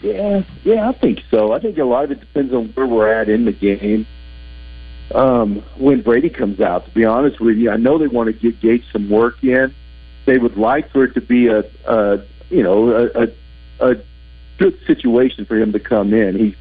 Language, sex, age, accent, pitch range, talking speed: English, male, 50-69, American, 95-130 Hz, 220 wpm